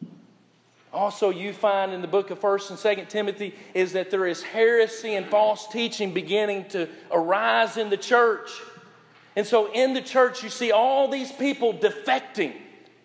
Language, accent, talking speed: English, American, 165 wpm